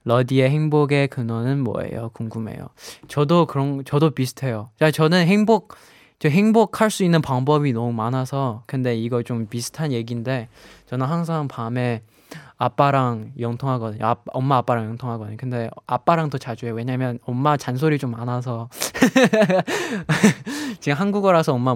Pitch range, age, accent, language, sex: 120-155 Hz, 20-39, native, Korean, male